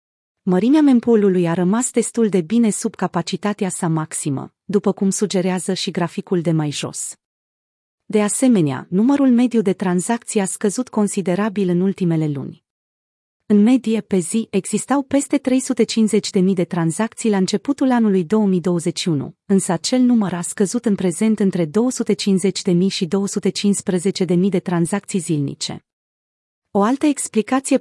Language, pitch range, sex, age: Romanian, 180-220 Hz, female, 30-49